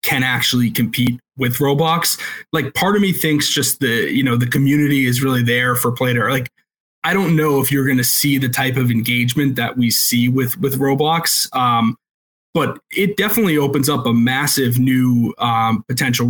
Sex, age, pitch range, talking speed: male, 20-39, 120-140 Hz, 190 wpm